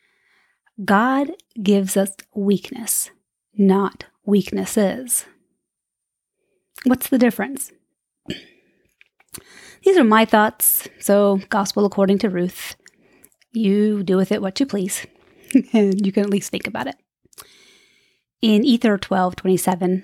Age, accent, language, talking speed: 30-49, American, English, 110 wpm